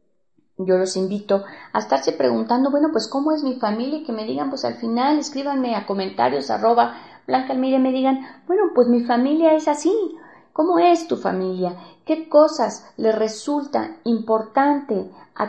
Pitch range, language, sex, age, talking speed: 185-245 Hz, Spanish, female, 40-59, 165 wpm